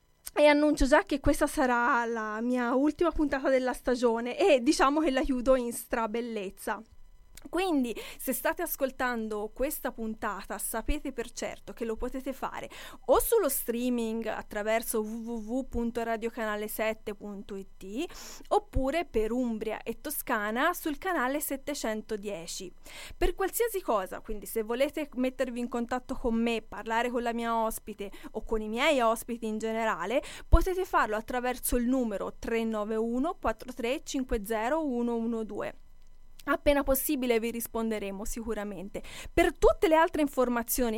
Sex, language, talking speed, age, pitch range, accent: female, Italian, 125 wpm, 20-39, 220-285 Hz, native